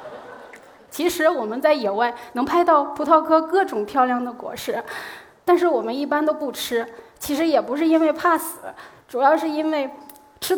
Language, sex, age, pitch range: Chinese, female, 20-39, 250-320 Hz